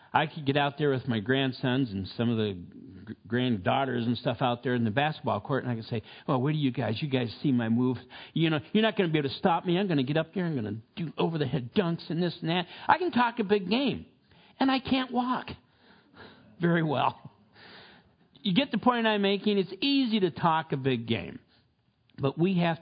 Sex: male